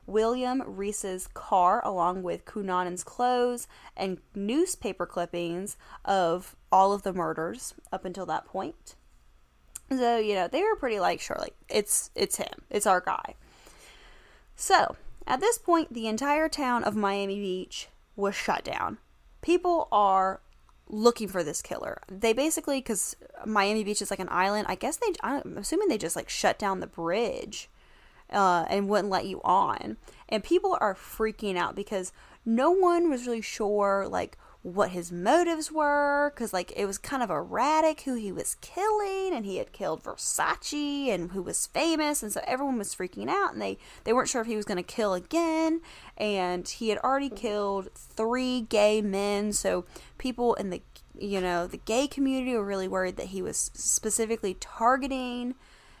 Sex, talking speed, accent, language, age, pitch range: female, 170 wpm, American, English, 10-29, 190-270 Hz